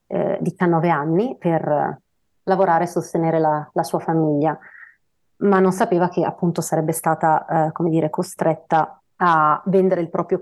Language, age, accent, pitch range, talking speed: Italian, 30-49, native, 160-185 Hz, 160 wpm